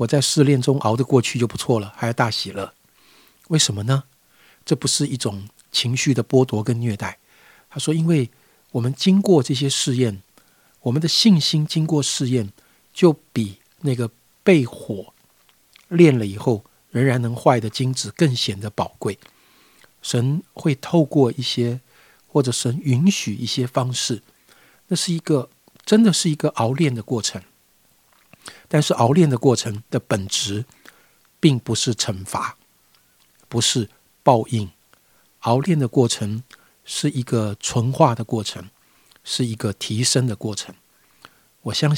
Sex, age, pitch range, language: male, 50-69, 110-145 Hz, Chinese